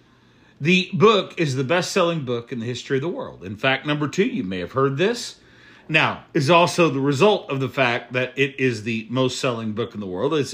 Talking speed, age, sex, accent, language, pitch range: 220 wpm, 50-69, male, American, English, 135-190 Hz